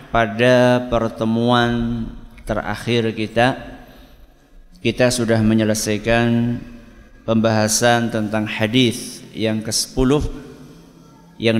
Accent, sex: native, male